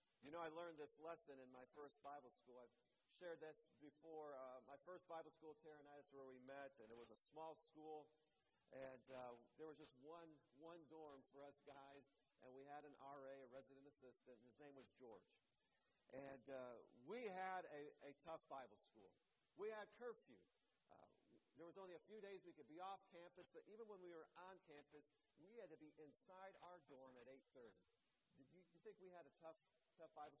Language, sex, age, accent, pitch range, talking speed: English, male, 50-69, American, 140-170 Hz, 210 wpm